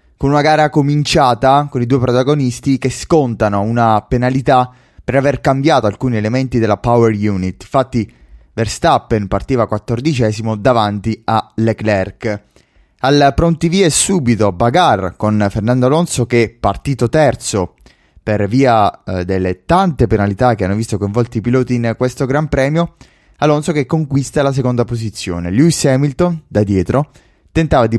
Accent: native